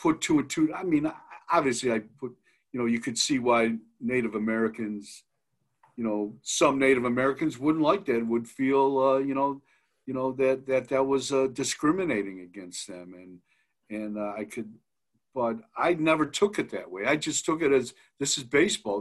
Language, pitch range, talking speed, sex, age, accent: English, 115-140 Hz, 195 wpm, male, 50-69, American